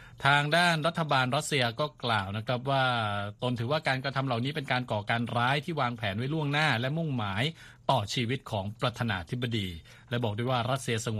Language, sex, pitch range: Thai, male, 110-135 Hz